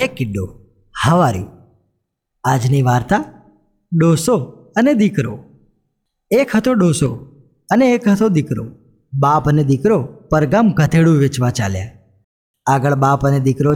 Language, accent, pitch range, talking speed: Gujarati, native, 125-175 Hz, 115 wpm